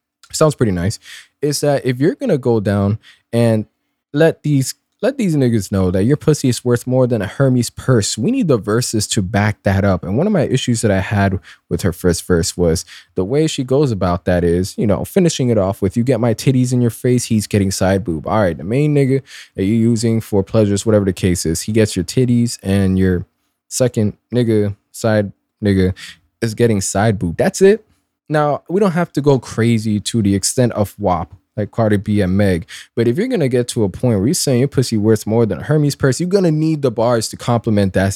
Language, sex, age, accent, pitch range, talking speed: English, male, 20-39, American, 100-135 Hz, 235 wpm